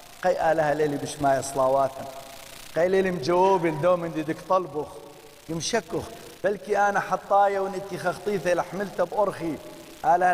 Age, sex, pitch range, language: 50-69, male, 160-205 Hz, English